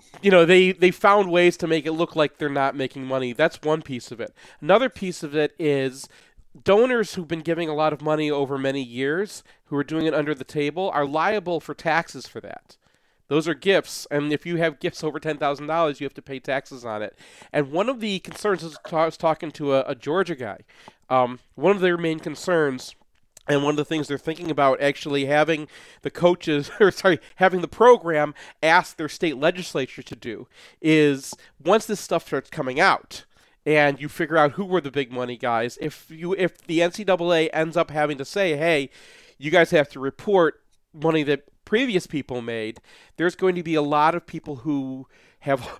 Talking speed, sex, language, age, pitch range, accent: 205 wpm, male, English, 40-59, 140-170 Hz, American